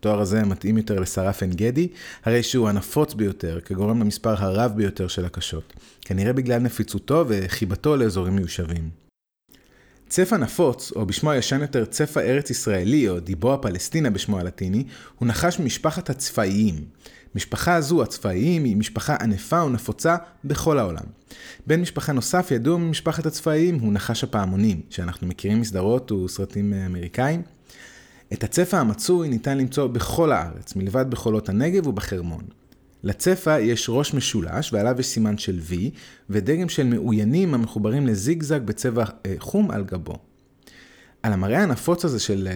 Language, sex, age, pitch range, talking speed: Hebrew, male, 30-49, 100-140 Hz, 140 wpm